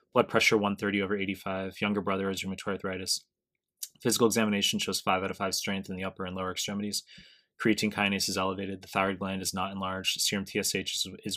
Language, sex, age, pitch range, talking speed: English, male, 20-39, 95-105 Hz, 195 wpm